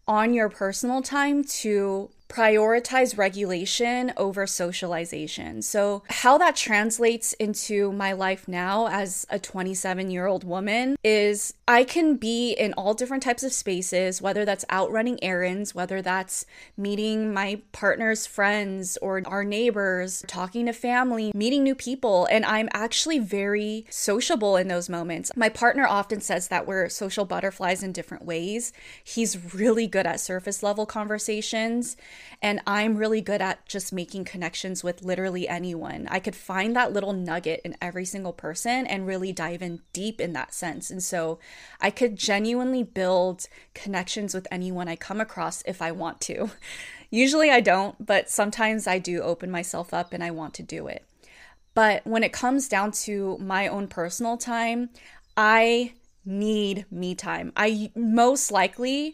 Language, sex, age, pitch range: English, female, 20-39, 185-225 Hz